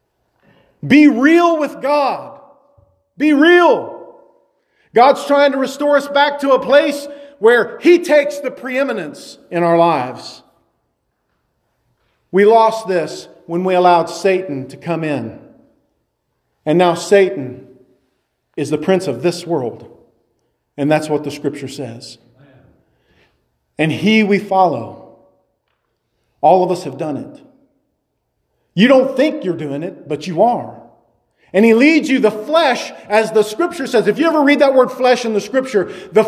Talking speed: 145 wpm